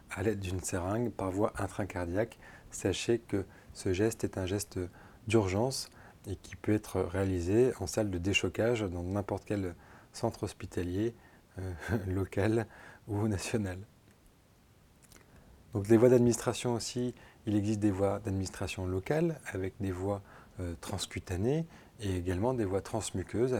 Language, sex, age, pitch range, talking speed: French, male, 20-39, 95-115 Hz, 135 wpm